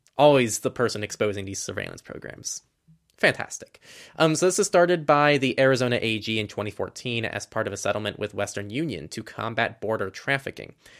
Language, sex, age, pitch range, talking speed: English, male, 20-39, 110-150 Hz, 170 wpm